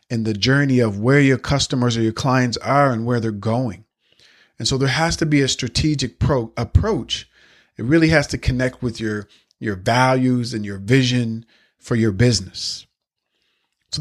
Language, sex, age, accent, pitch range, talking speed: English, male, 40-59, American, 110-140 Hz, 170 wpm